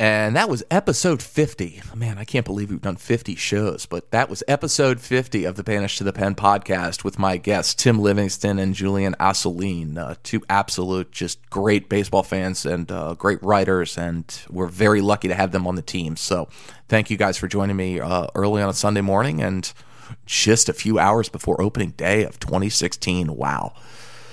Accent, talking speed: American, 190 wpm